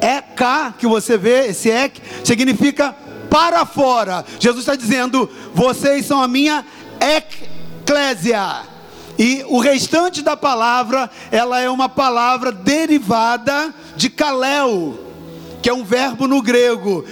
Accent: Brazilian